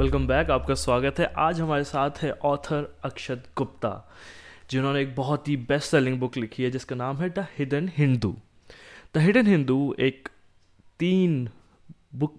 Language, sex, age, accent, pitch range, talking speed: Hindi, male, 20-39, native, 120-145 Hz, 160 wpm